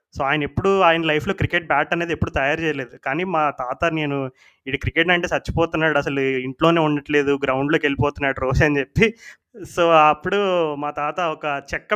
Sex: male